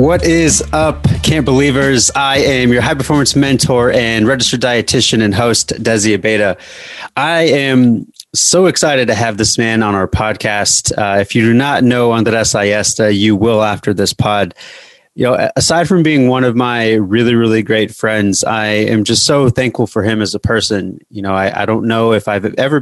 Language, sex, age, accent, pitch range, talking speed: English, male, 30-49, American, 105-130 Hz, 190 wpm